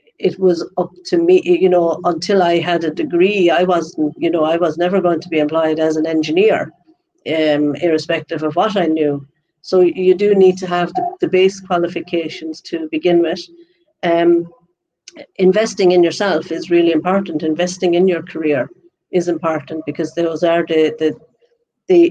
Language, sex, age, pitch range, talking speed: English, female, 50-69, 160-195 Hz, 170 wpm